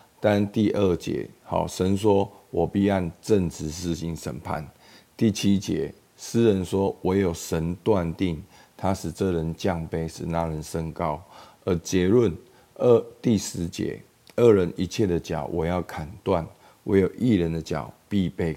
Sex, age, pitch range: male, 50-69, 80-100 Hz